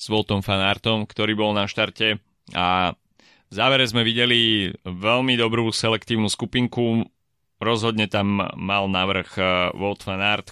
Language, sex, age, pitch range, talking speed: Slovak, male, 20-39, 90-105 Hz, 125 wpm